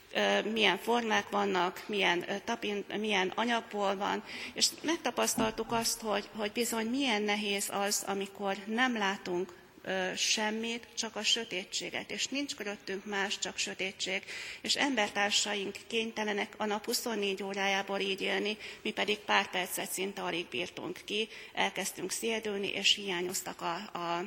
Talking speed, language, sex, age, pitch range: 130 wpm, Hungarian, female, 30-49, 195-225 Hz